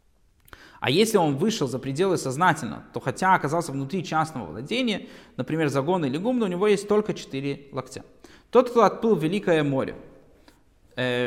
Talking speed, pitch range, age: 155 wpm, 145-205 Hz, 20-39